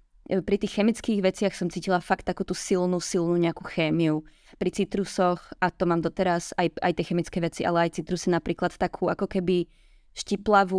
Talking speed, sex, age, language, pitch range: 170 wpm, female, 20-39, Czech, 180-205 Hz